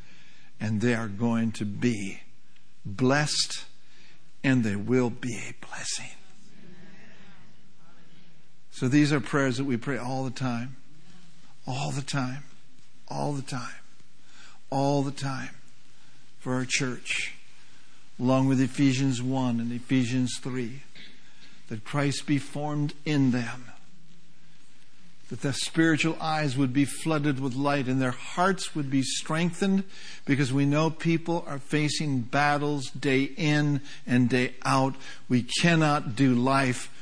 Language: English